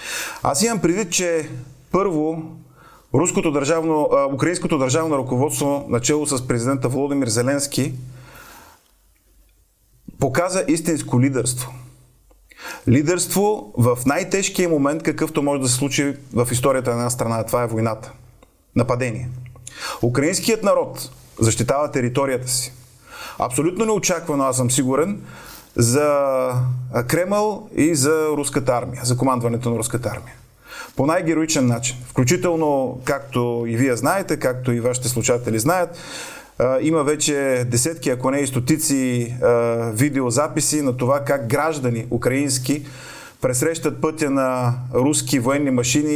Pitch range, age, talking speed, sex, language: 125-150 Hz, 30-49, 120 wpm, male, Bulgarian